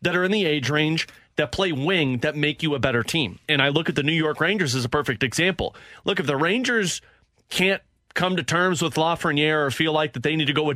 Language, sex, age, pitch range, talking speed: English, male, 30-49, 145-185 Hz, 255 wpm